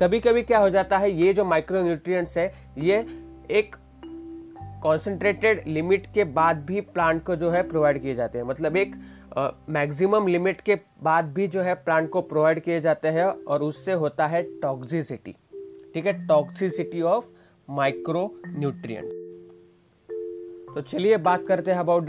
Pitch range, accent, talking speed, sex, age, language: 145-180 Hz, native, 160 wpm, male, 30-49, Hindi